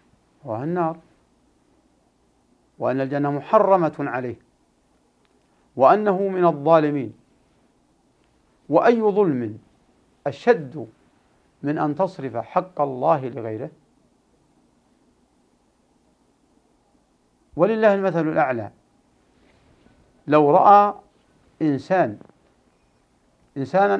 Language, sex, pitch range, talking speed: Arabic, male, 145-195 Hz, 60 wpm